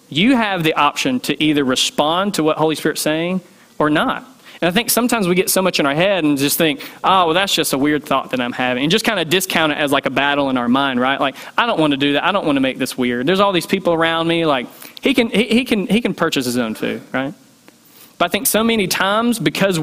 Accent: American